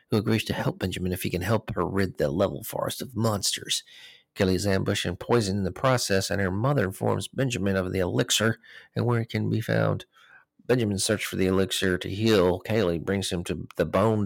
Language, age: English, 40-59